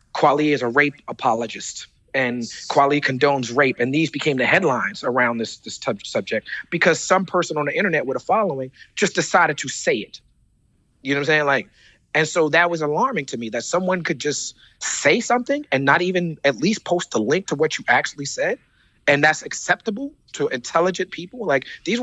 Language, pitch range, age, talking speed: English, 135-180 Hz, 30-49, 200 wpm